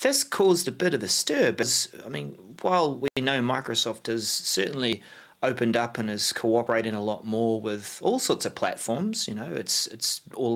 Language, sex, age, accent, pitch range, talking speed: English, male, 30-49, Australian, 105-135 Hz, 195 wpm